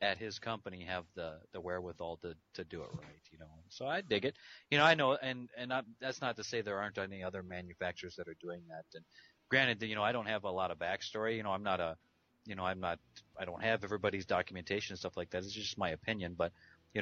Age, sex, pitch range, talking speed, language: 30-49, male, 85-105 Hz, 255 wpm, English